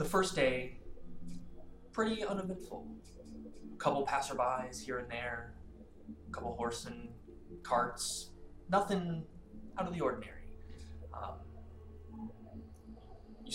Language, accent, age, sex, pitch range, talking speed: English, American, 20-39, male, 80-130 Hz, 100 wpm